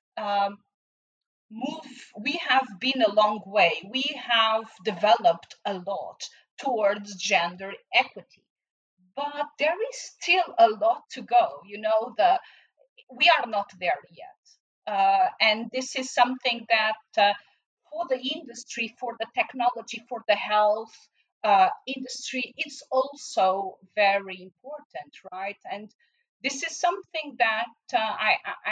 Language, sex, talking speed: English, female, 125 wpm